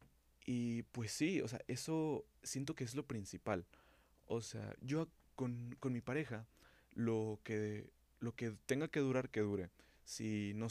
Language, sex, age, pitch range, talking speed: Spanish, male, 20-39, 100-125 Hz, 165 wpm